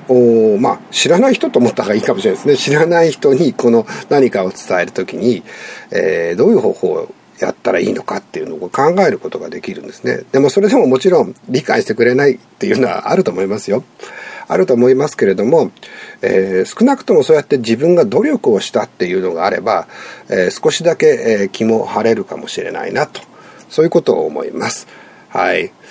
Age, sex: 50-69, male